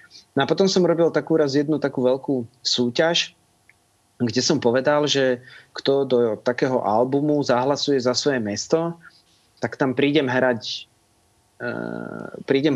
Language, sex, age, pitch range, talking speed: Slovak, male, 30-49, 120-160 Hz, 130 wpm